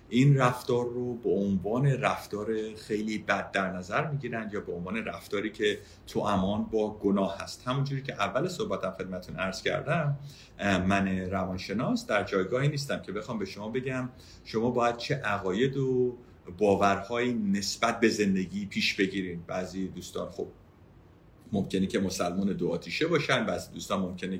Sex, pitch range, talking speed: male, 95-130 Hz, 150 wpm